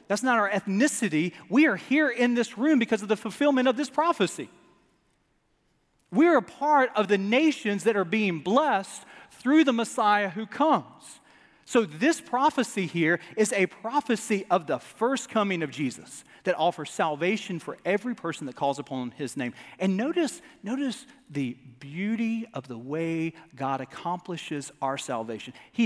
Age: 40-59